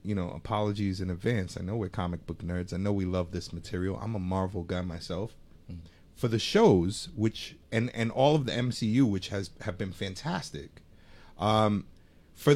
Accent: American